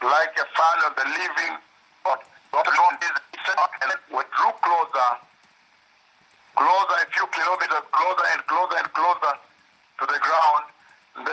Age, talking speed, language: 60-79, 115 wpm, English